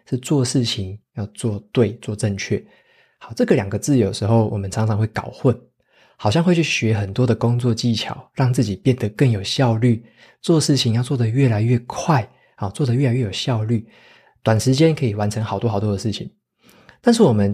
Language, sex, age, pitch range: Chinese, male, 20-39, 105-130 Hz